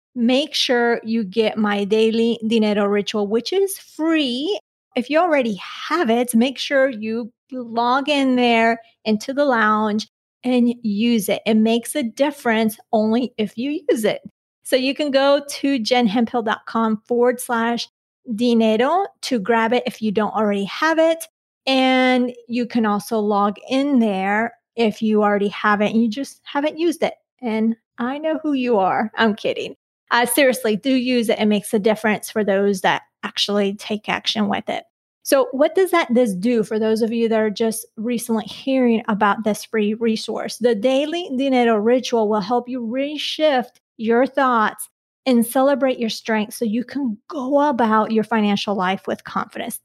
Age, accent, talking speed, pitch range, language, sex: 30-49, American, 170 wpm, 220-265 Hz, English, female